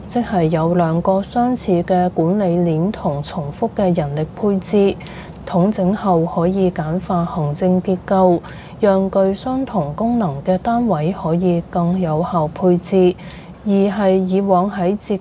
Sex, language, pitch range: female, Chinese, 175-205 Hz